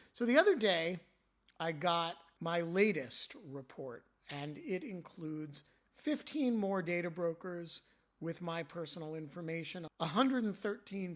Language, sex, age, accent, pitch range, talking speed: English, male, 50-69, American, 155-195 Hz, 115 wpm